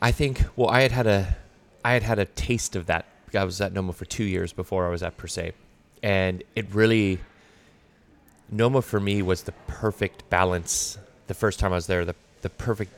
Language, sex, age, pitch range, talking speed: Danish, male, 30-49, 90-100 Hz, 215 wpm